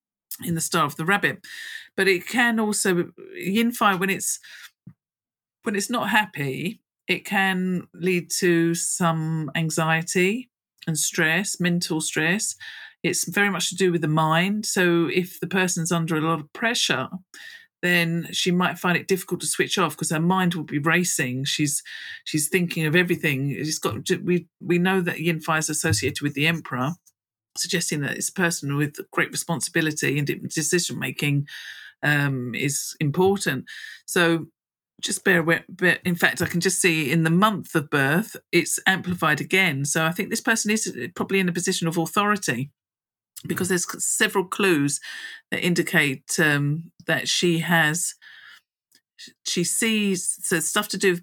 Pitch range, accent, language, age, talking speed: 160-190 Hz, British, English, 50-69, 165 wpm